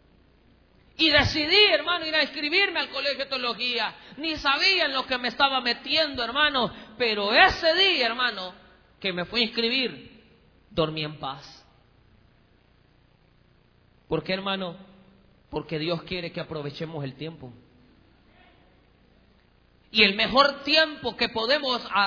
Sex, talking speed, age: male, 130 wpm, 40-59